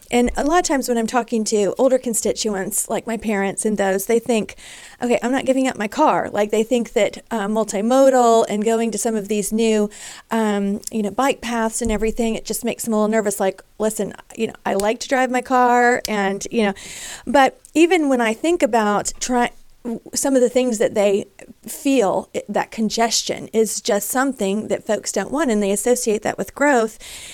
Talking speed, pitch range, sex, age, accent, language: 205 wpm, 210-250 Hz, female, 40-59, American, English